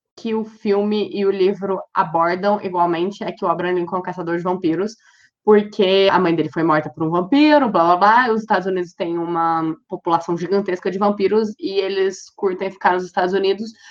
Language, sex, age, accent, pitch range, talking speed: Portuguese, female, 20-39, Brazilian, 170-215 Hz, 200 wpm